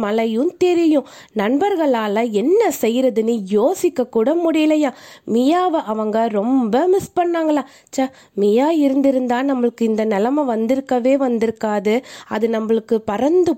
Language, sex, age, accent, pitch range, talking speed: Tamil, female, 20-39, native, 225-320 Hz, 100 wpm